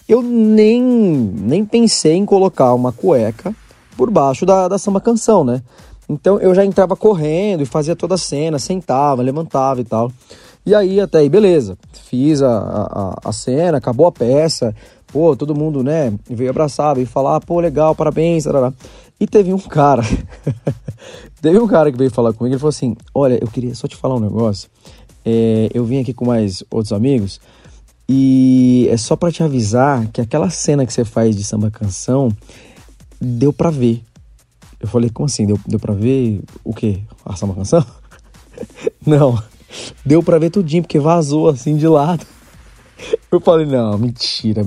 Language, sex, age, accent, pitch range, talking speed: Portuguese, male, 20-39, Brazilian, 120-170 Hz, 165 wpm